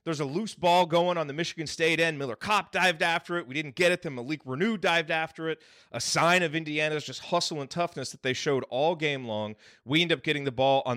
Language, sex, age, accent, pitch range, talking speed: English, male, 30-49, American, 125-165 Hz, 250 wpm